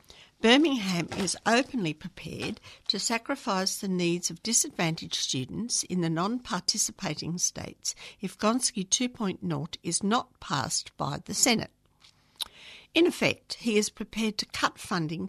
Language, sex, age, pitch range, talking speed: English, female, 60-79, 160-215 Hz, 125 wpm